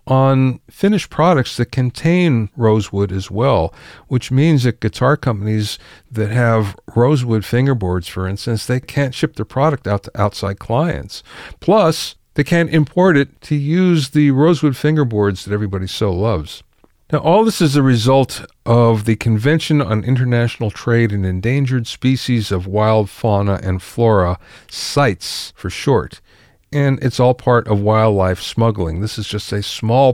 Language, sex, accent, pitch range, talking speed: English, male, American, 105-140 Hz, 155 wpm